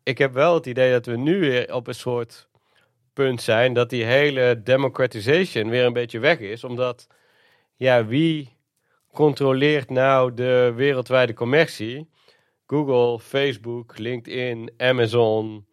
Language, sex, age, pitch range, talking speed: Dutch, male, 40-59, 120-140 Hz, 130 wpm